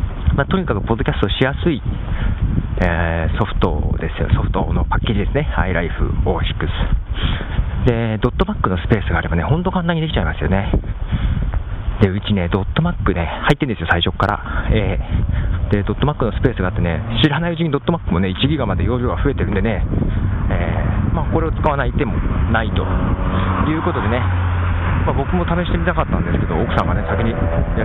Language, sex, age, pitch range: Japanese, male, 40-59, 85-105 Hz